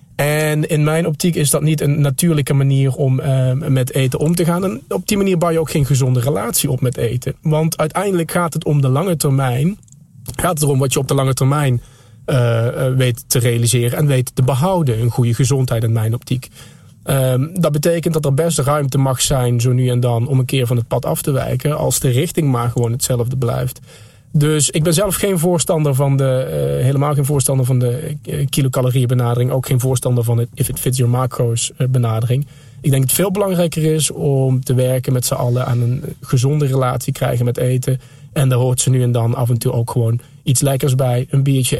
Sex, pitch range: male, 125-145 Hz